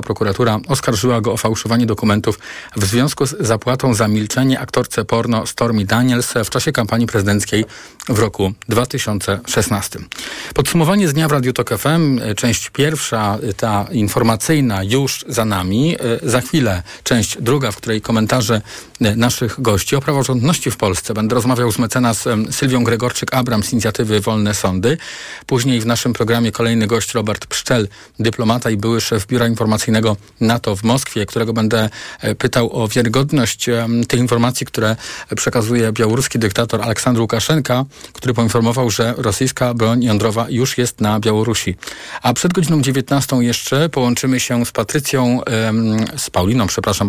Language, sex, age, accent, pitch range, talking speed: Polish, male, 40-59, native, 110-125 Hz, 140 wpm